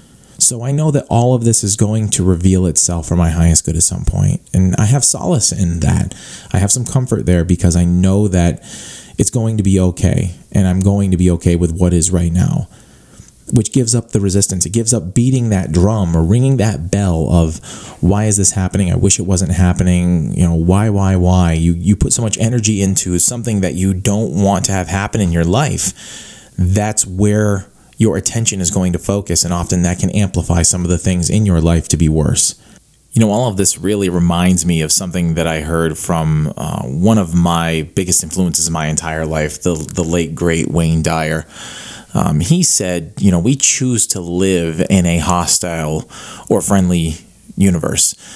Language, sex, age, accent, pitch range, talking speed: English, male, 30-49, American, 85-105 Hz, 205 wpm